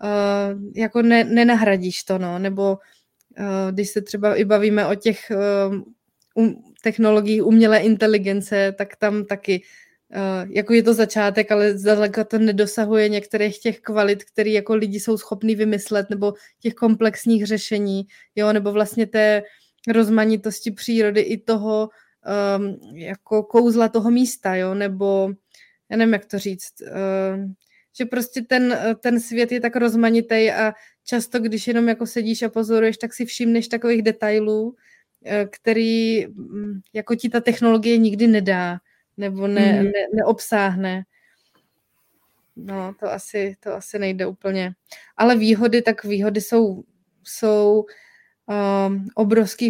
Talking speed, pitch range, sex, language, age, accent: 135 wpm, 200-225 Hz, female, Czech, 20-39, native